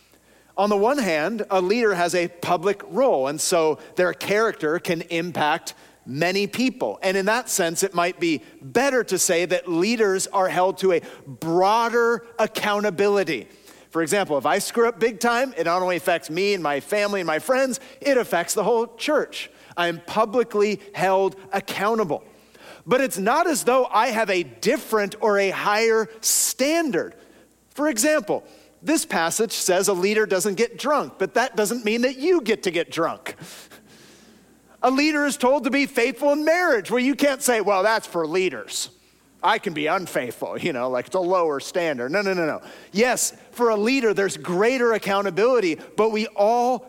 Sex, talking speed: male, 180 wpm